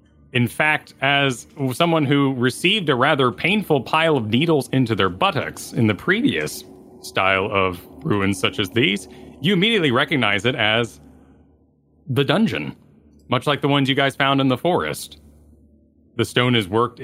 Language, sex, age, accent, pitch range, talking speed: English, male, 30-49, American, 95-135 Hz, 160 wpm